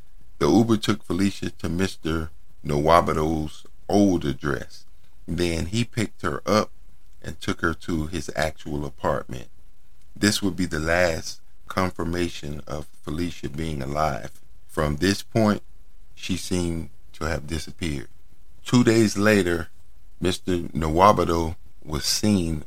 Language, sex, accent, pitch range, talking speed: English, male, American, 75-90 Hz, 120 wpm